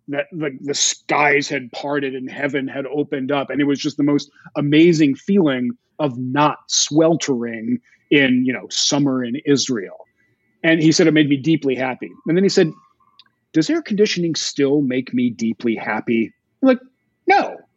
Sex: male